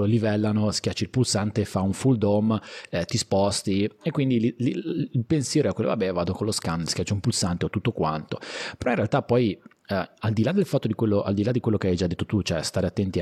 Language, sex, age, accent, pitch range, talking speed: Italian, male, 30-49, native, 90-115 Hz, 250 wpm